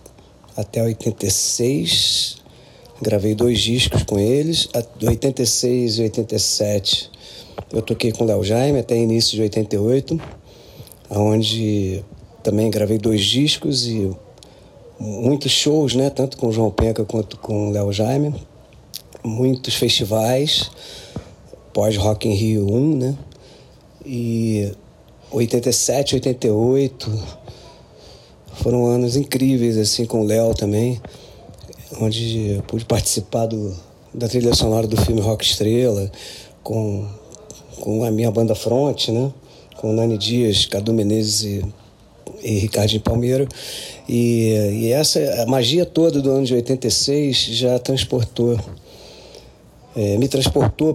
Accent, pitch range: Brazilian, 110-125 Hz